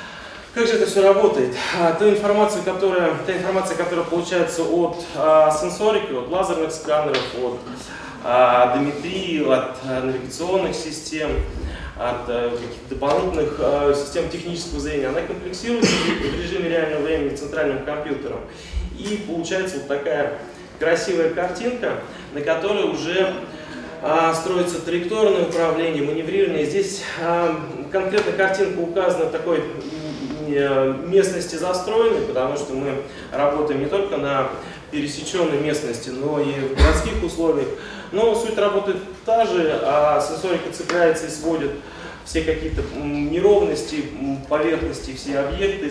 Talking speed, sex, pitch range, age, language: 110 wpm, male, 145-180 Hz, 20-39, Russian